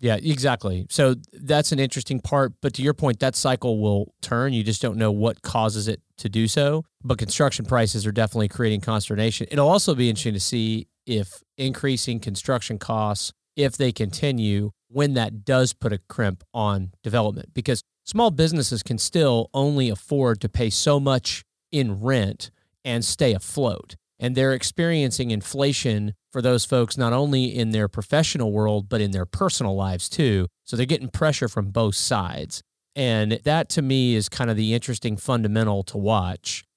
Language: English